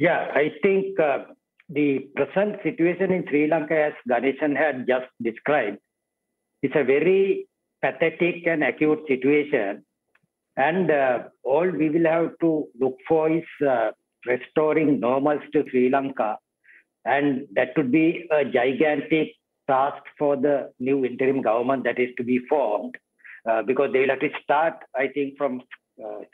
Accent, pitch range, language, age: Indian, 135-165 Hz, English, 60-79